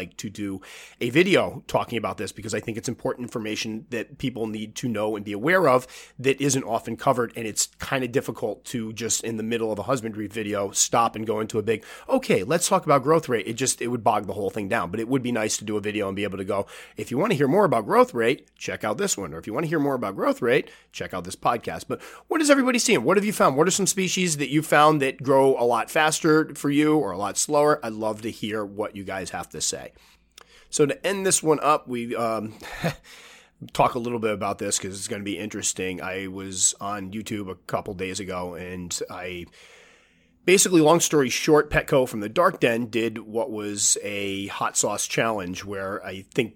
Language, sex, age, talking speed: English, male, 30-49, 240 wpm